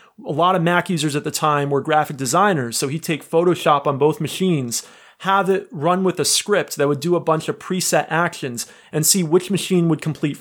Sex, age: male, 30-49